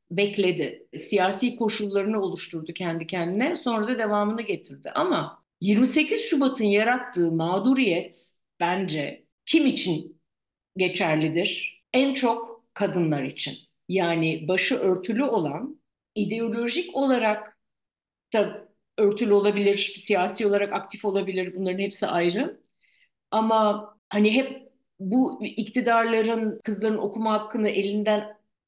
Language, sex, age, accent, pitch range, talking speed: Turkish, female, 50-69, native, 180-225 Hz, 100 wpm